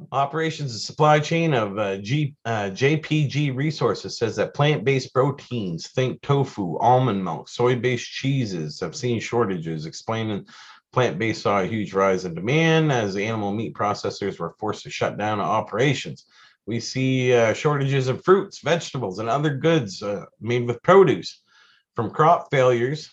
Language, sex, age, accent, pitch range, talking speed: English, male, 40-59, American, 110-145 Hz, 150 wpm